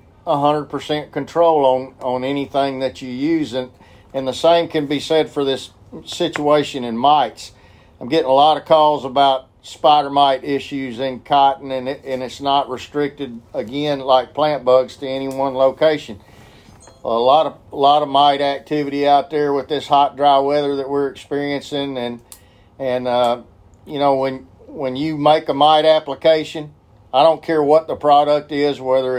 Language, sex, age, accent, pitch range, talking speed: English, male, 50-69, American, 130-150 Hz, 175 wpm